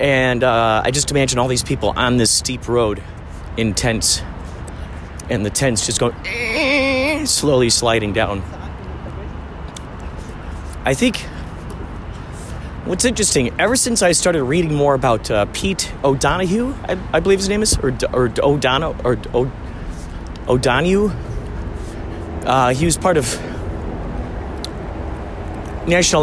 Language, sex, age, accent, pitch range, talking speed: English, male, 30-49, American, 85-130 Hz, 120 wpm